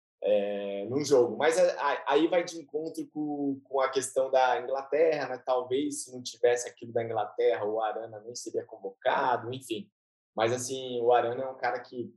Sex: male